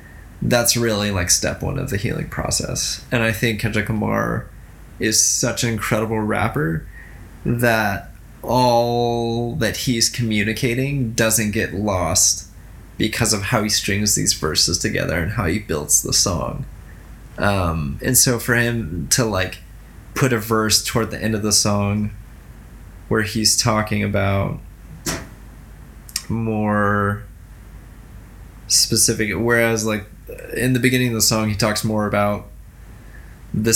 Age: 20-39